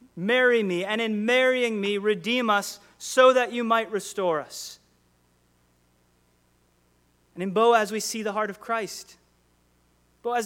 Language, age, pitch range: English, 30-49, 145-210 Hz